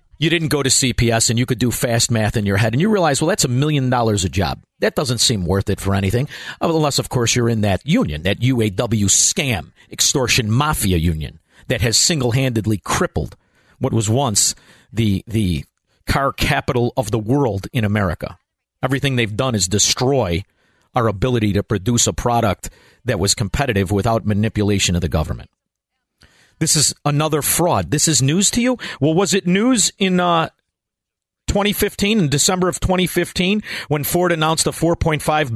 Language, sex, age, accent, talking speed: English, male, 50-69, American, 175 wpm